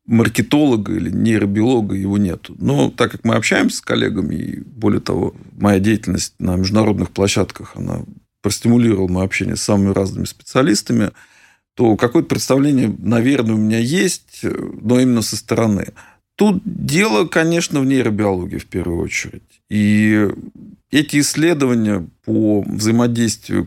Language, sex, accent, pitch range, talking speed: Russian, male, native, 105-120 Hz, 130 wpm